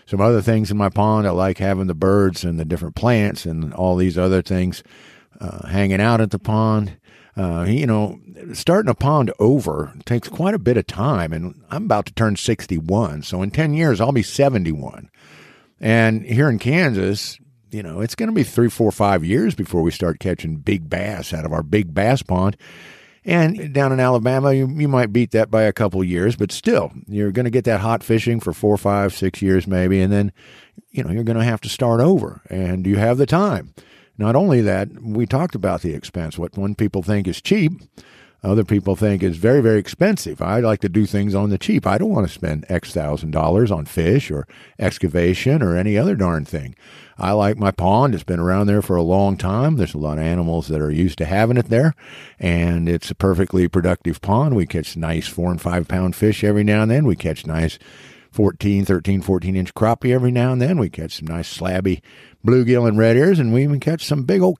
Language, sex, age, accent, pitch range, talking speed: English, male, 50-69, American, 90-120 Hz, 220 wpm